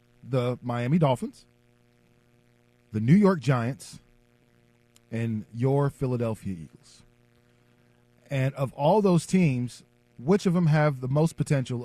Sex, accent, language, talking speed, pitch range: male, American, English, 115 wpm, 120-145 Hz